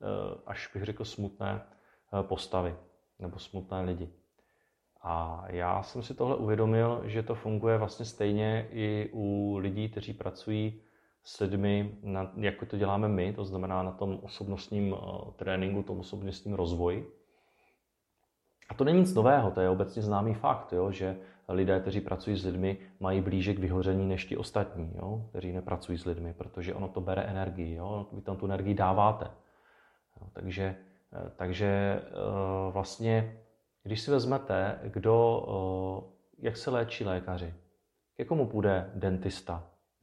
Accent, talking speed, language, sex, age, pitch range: native, 140 wpm, Czech, male, 30-49, 95-110 Hz